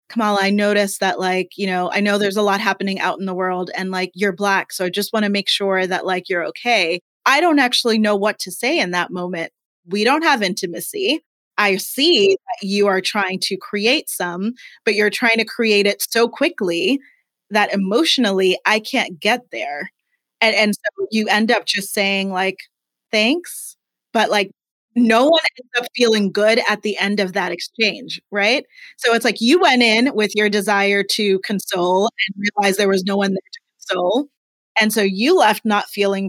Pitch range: 190-230 Hz